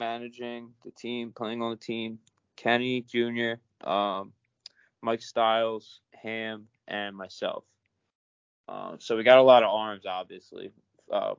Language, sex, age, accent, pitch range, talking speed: English, male, 20-39, American, 105-115 Hz, 130 wpm